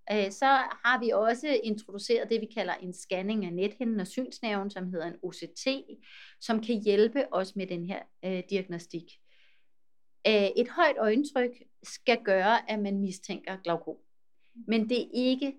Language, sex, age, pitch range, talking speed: Danish, female, 30-49, 190-240 Hz, 150 wpm